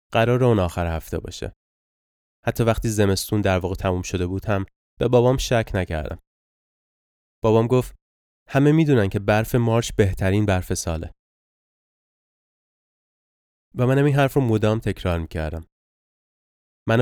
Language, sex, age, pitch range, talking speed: Persian, male, 20-39, 85-120 Hz, 125 wpm